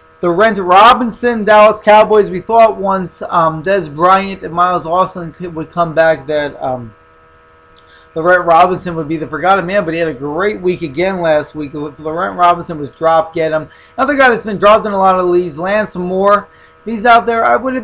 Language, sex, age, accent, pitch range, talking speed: English, male, 20-39, American, 150-195 Hz, 210 wpm